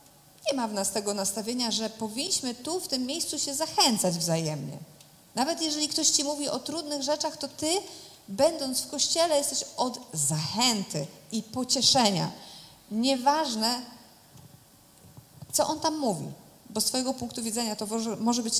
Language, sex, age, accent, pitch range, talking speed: Polish, female, 30-49, native, 205-285 Hz, 150 wpm